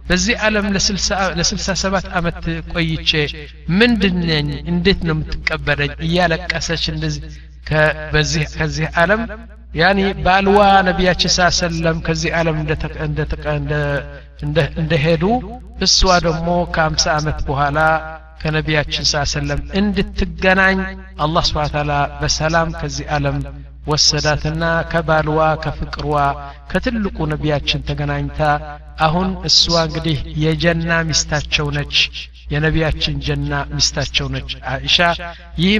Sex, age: male, 60-79